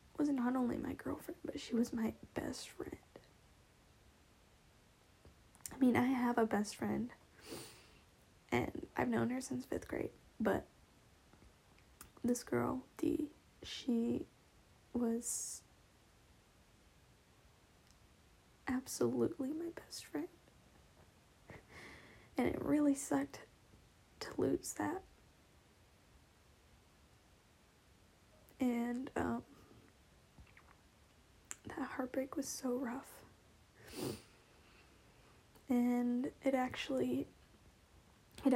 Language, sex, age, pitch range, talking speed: English, female, 10-29, 225-275 Hz, 80 wpm